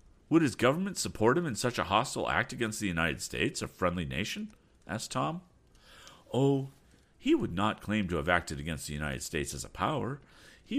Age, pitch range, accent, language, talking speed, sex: 50-69, 80-120 Hz, American, English, 195 wpm, male